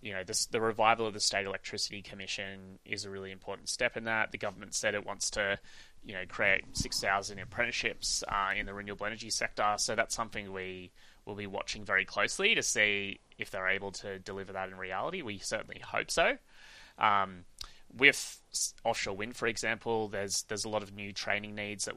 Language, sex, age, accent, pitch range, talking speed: English, male, 20-39, Australian, 95-105 Hz, 200 wpm